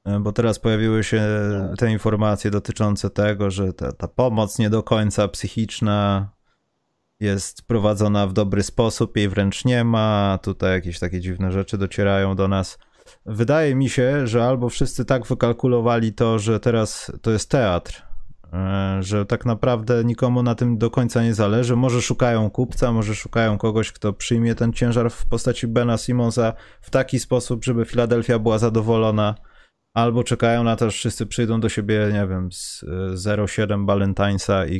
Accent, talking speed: native, 160 wpm